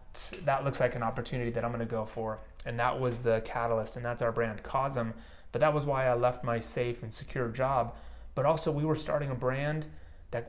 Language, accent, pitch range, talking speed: English, American, 115-140 Hz, 230 wpm